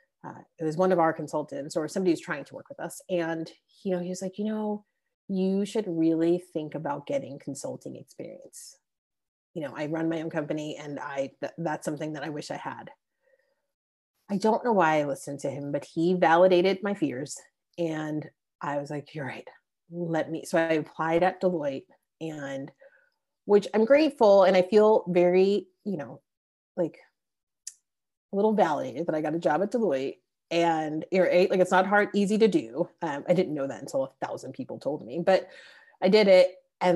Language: English